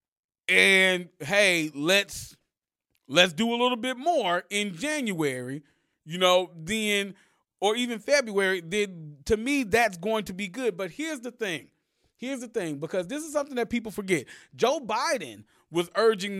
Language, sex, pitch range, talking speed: English, male, 170-240 Hz, 155 wpm